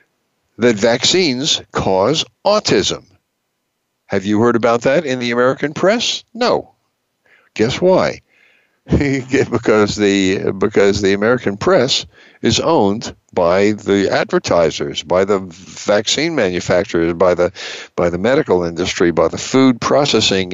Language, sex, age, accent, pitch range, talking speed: English, male, 60-79, American, 95-120 Hz, 120 wpm